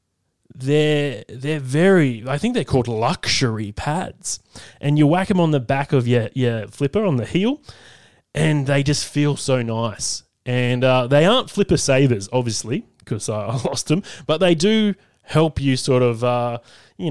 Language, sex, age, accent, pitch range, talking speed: English, male, 20-39, Australian, 115-155 Hz, 175 wpm